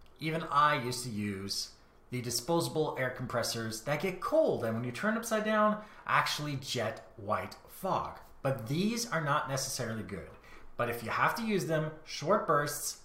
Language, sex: English, male